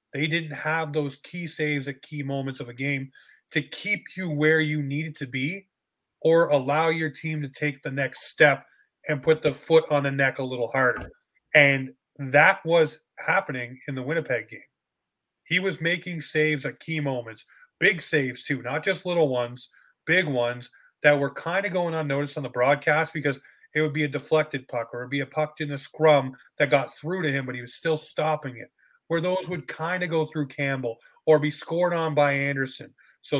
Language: English